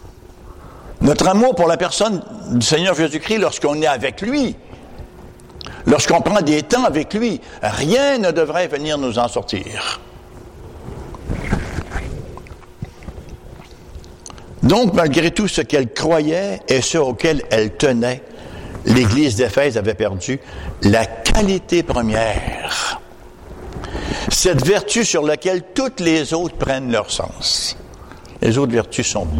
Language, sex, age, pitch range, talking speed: English, male, 60-79, 105-165 Hz, 115 wpm